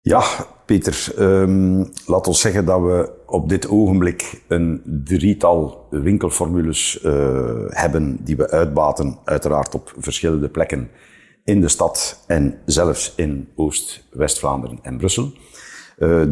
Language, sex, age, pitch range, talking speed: Dutch, male, 50-69, 75-90 Hz, 120 wpm